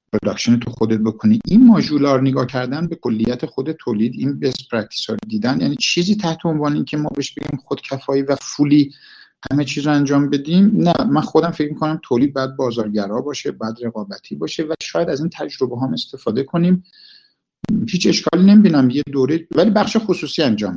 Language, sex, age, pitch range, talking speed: Persian, male, 50-69, 115-160 Hz, 180 wpm